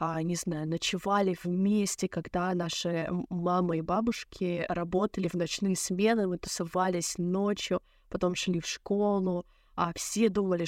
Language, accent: Russian, native